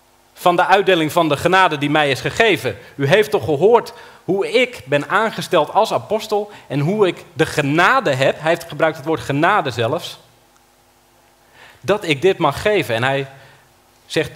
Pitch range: 120-170 Hz